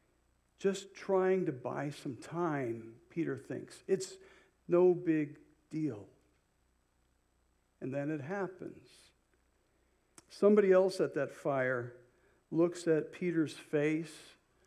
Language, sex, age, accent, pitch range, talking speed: English, male, 60-79, American, 135-185 Hz, 100 wpm